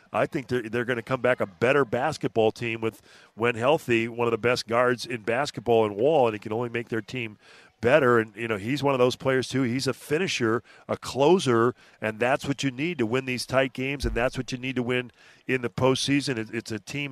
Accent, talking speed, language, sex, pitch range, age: American, 240 wpm, English, male, 115-135 Hz, 40-59